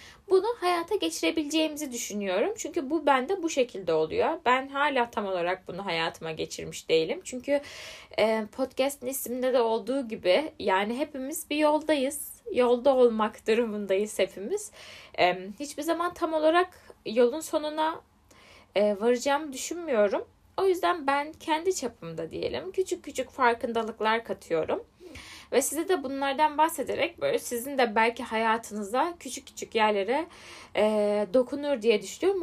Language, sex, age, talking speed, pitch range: Turkish, female, 10-29, 125 wpm, 220-320 Hz